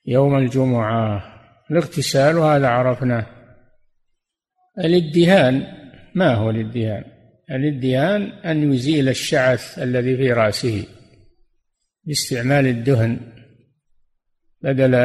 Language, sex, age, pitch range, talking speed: Arabic, male, 60-79, 125-155 Hz, 75 wpm